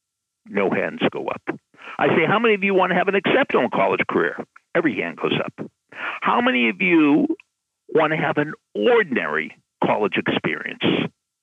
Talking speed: 170 wpm